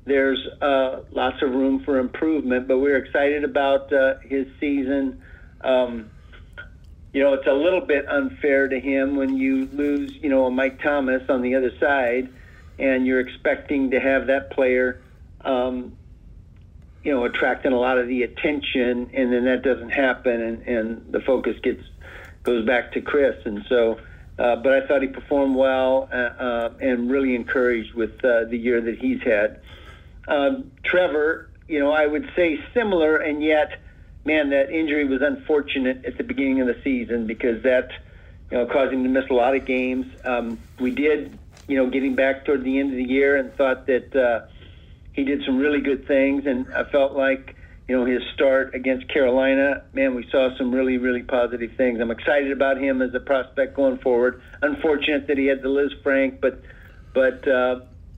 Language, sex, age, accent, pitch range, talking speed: English, male, 50-69, American, 120-140 Hz, 185 wpm